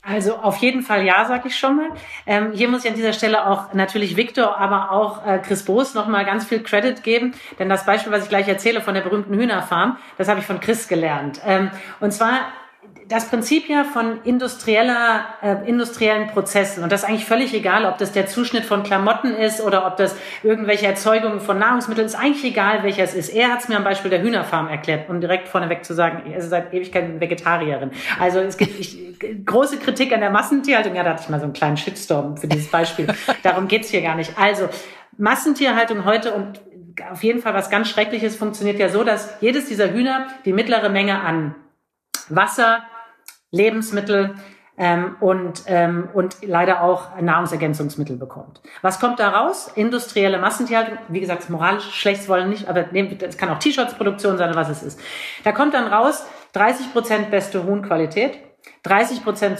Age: 40-59